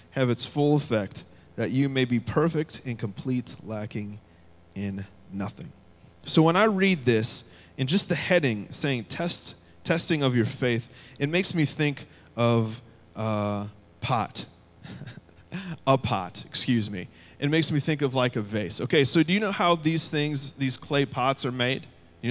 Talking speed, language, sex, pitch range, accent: 170 wpm, English, male, 110-140 Hz, American